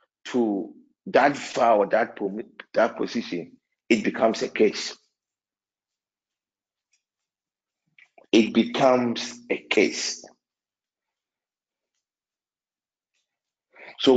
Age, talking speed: 50-69, 60 wpm